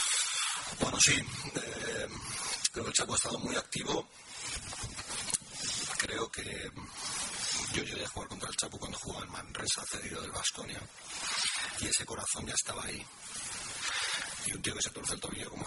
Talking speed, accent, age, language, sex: 170 wpm, Spanish, 40-59, Spanish, male